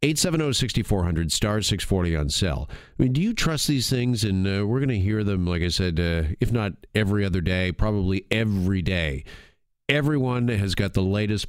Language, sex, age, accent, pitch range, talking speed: English, male, 40-59, American, 90-115 Hz, 190 wpm